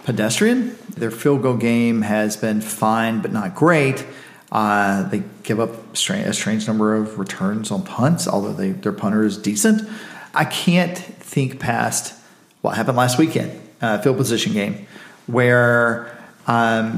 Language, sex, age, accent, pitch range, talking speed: English, male, 40-59, American, 110-140 Hz, 145 wpm